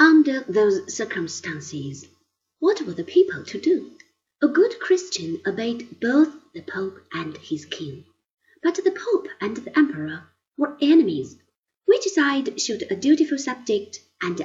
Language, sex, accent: Chinese, female, British